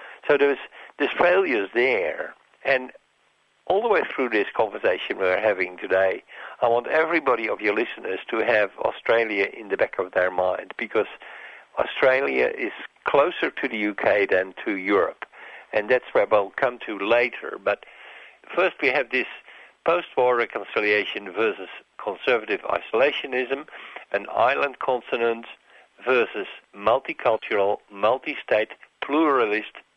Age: 60-79